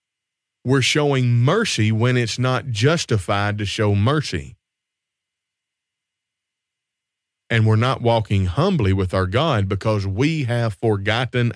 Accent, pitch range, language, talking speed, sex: American, 100-130 Hz, English, 115 wpm, male